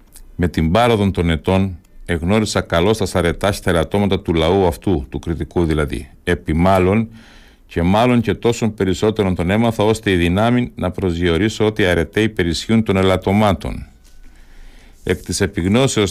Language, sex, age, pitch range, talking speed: Greek, male, 50-69, 90-110 Hz, 145 wpm